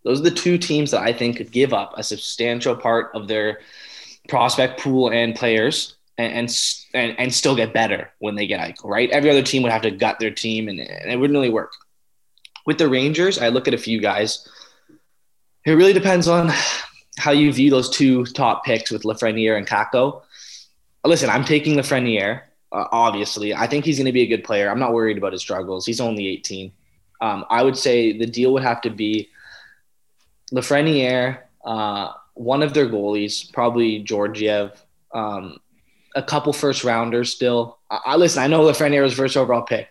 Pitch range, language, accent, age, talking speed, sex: 110-145 Hz, English, American, 20-39, 190 wpm, male